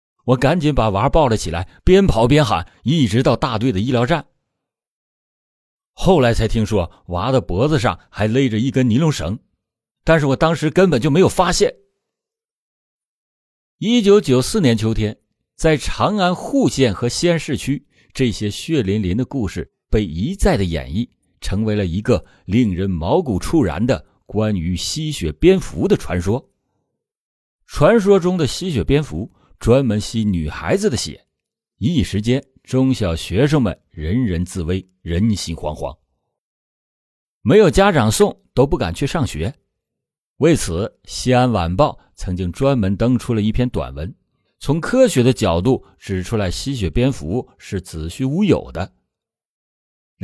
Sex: male